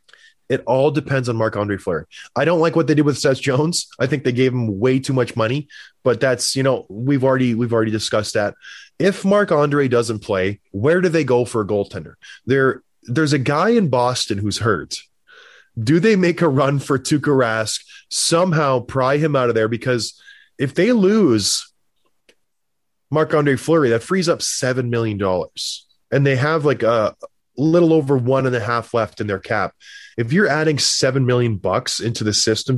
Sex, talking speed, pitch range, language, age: male, 190 wpm, 125-170 Hz, English, 20-39